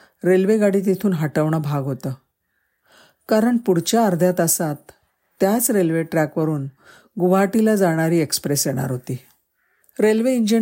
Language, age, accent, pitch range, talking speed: Marathi, 50-69, native, 155-200 Hz, 90 wpm